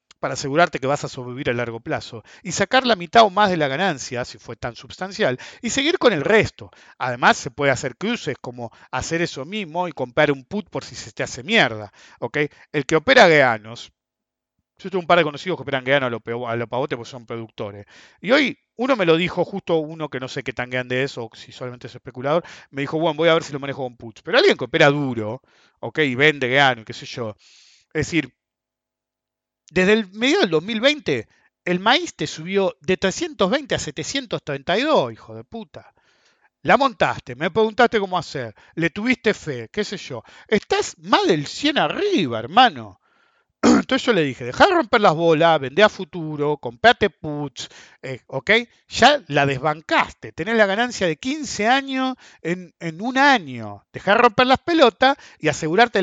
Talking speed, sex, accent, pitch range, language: 195 wpm, male, Argentinian, 130-215 Hz, English